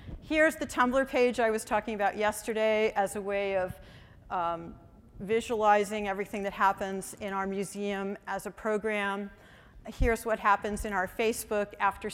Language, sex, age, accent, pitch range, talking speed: English, female, 40-59, American, 195-230 Hz, 155 wpm